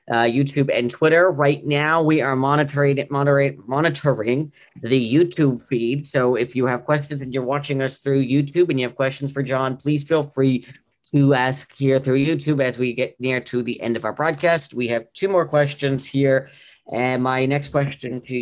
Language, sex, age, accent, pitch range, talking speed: English, male, 40-59, American, 125-145 Hz, 190 wpm